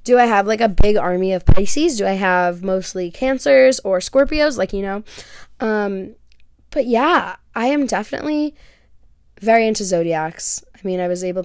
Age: 20-39